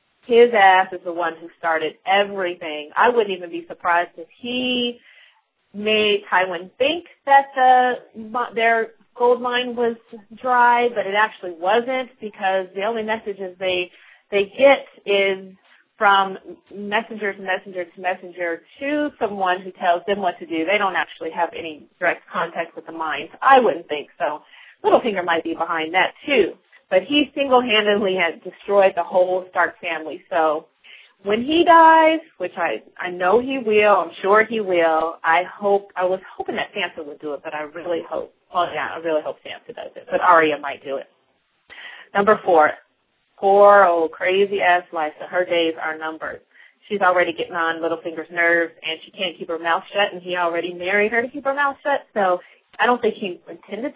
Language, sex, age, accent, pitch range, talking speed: English, female, 40-59, American, 175-235 Hz, 180 wpm